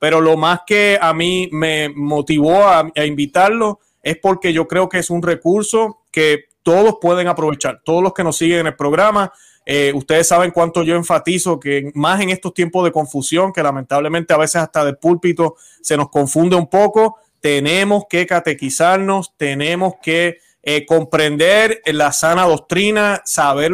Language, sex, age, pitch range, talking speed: Spanish, male, 30-49, 150-185 Hz, 170 wpm